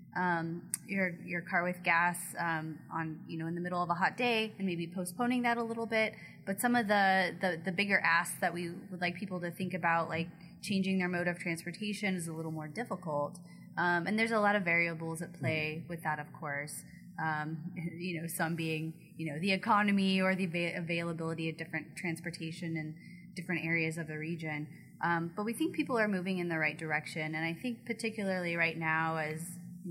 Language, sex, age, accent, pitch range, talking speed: English, female, 20-39, American, 165-190 Hz, 210 wpm